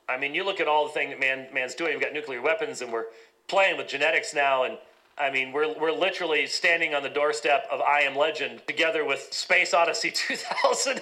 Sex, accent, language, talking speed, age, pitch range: male, American, English, 225 wpm, 40-59, 165-235 Hz